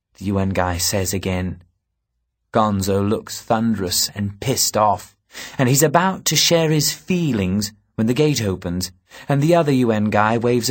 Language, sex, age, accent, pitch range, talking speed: English, male, 30-49, British, 100-140 Hz, 155 wpm